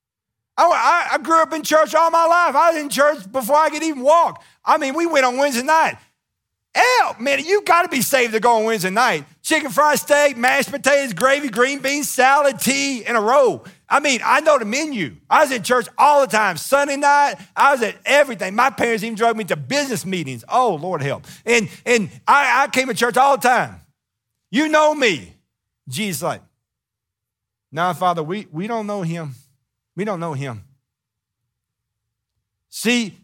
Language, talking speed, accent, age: English, 195 wpm, American, 50-69